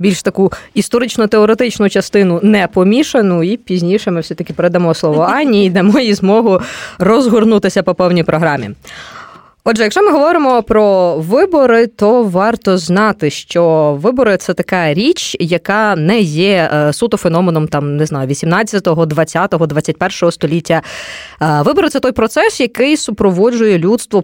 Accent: native